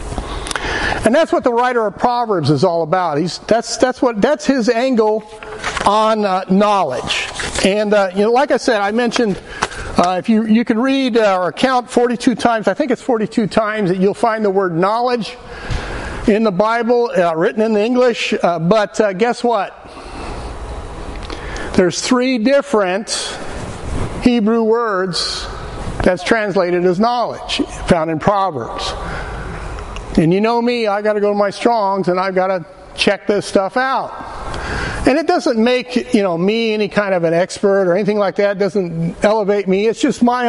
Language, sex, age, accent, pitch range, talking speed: English, male, 60-79, American, 185-240 Hz, 170 wpm